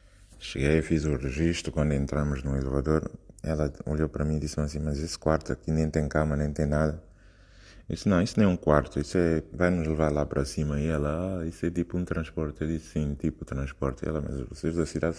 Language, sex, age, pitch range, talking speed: Portuguese, male, 20-39, 75-90 Hz, 235 wpm